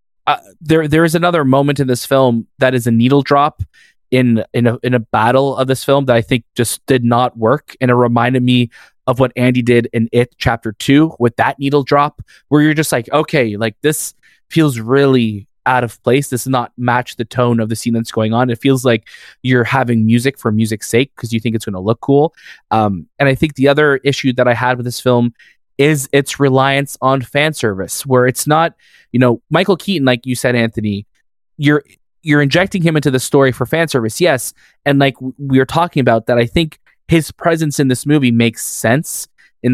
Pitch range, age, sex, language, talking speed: 120-145 Hz, 20-39, male, English, 220 wpm